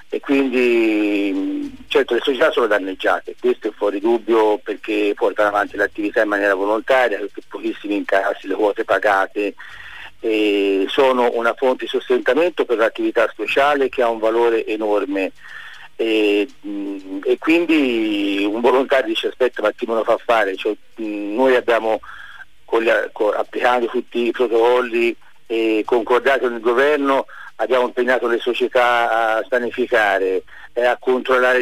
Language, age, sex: Italian, 50-69, male